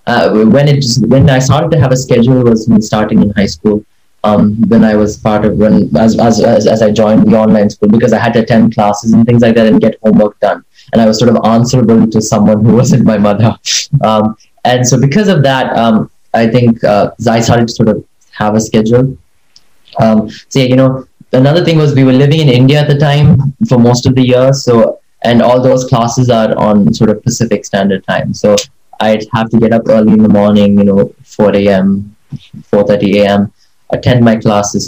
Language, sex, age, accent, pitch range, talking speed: Hindi, male, 20-39, native, 105-125 Hz, 215 wpm